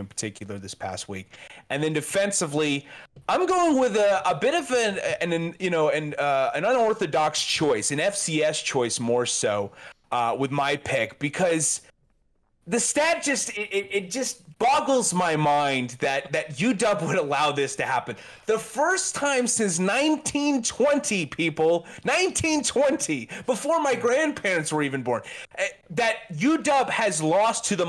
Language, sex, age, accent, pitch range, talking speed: English, male, 30-49, American, 145-220 Hz, 150 wpm